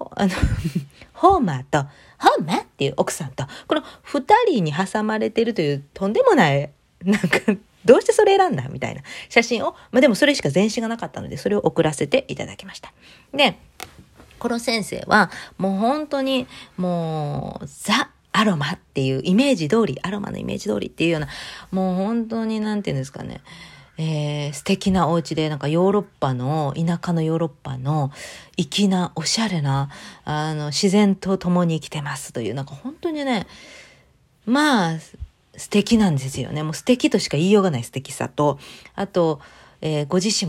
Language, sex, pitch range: Japanese, female, 155-220 Hz